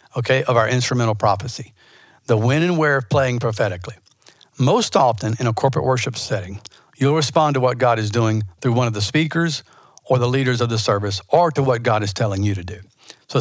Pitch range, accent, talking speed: 115-145 Hz, American, 210 wpm